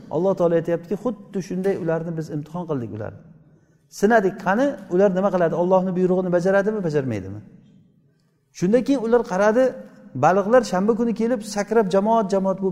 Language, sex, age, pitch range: Russian, male, 50-69, 165-210 Hz